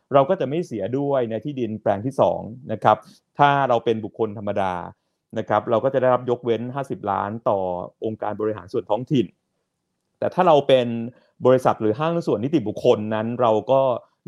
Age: 30-49